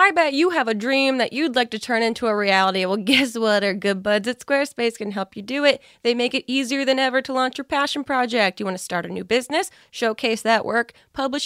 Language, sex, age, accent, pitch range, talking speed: English, female, 20-39, American, 205-270 Hz, 255 wpm